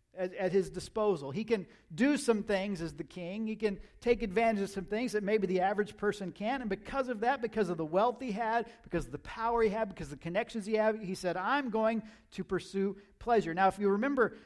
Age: 50-69